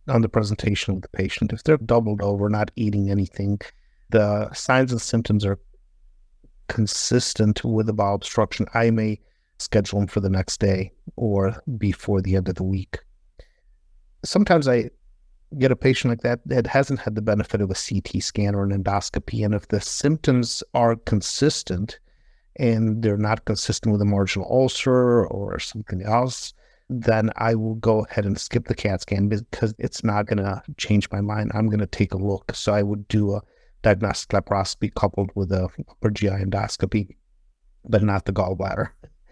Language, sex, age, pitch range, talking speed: English, male, 50-69, 100-115 Hz, 170 wpm